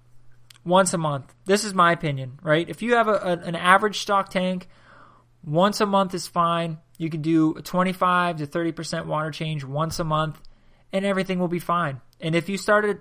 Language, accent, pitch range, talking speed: English, American, 145-185 Hz, 195 wpm